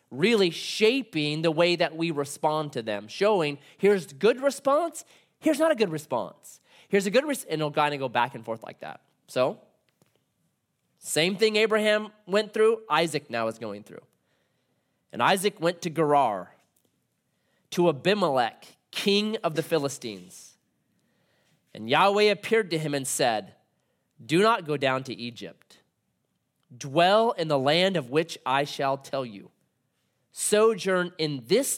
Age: 30-49